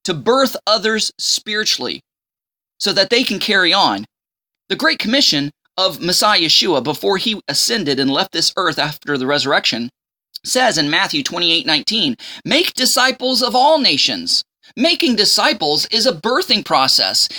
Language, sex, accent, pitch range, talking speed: English, male, American, 180-260 Hz, 145 wpm